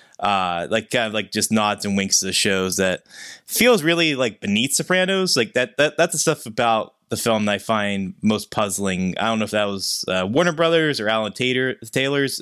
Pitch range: 100-130 Hz